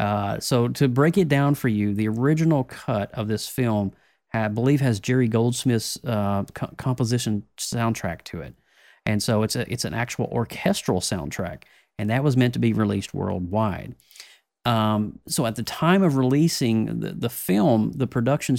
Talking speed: 175 wpm